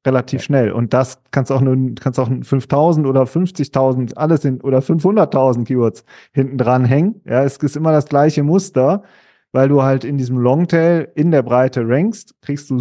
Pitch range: 130-155 Hz